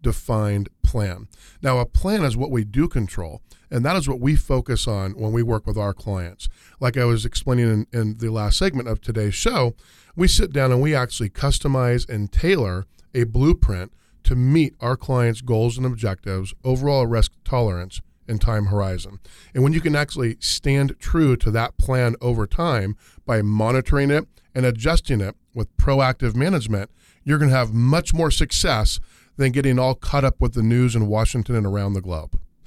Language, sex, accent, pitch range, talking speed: English, male, American, 105-135 Hz, 185 wpm